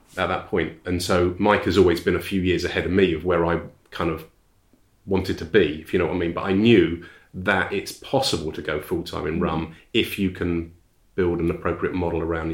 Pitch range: 85-100 Hz